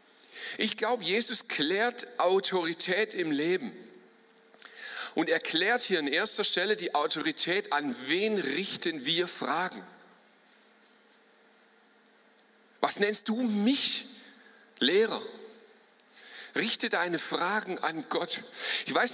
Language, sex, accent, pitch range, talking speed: German, male, German, 195-255 Hz, 100 wpm